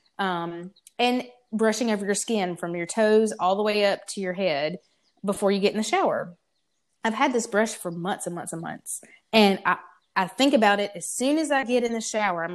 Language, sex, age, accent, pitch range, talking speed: English, female, 20-39, American, 180-230 Hz, 225 wpm